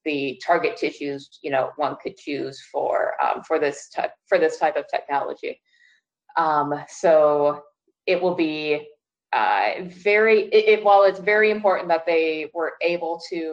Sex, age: female, 20-39